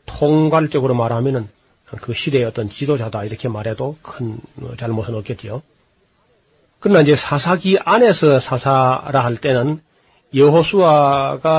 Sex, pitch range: male, 120-155 Hz